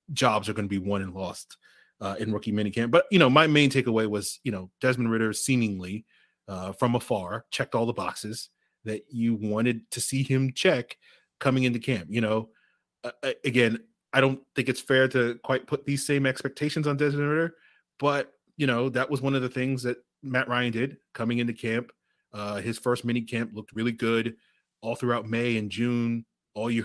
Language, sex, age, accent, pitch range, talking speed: English, male, 30-49, American, 110-130 Hz, 200 wpm